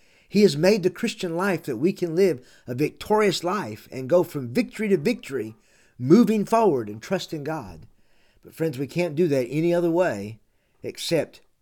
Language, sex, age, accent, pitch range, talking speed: English, male, 50-69, American, 120-180 Hz, 175 wpm